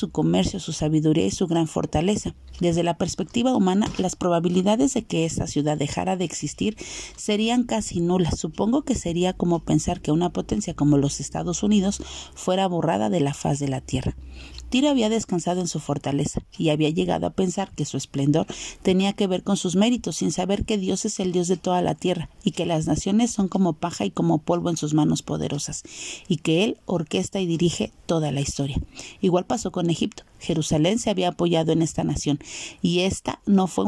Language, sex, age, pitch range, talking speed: Spanish, female, 40-59, 155-200 Hz, 200 wpm